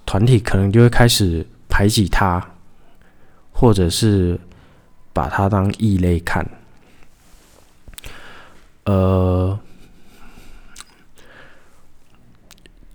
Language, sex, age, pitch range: Chinese, male, 20-39, 85-110 Hz